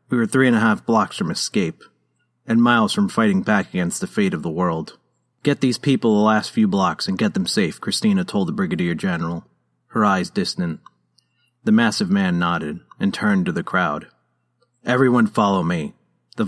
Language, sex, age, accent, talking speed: English, male, 30-49, American, 190 wpm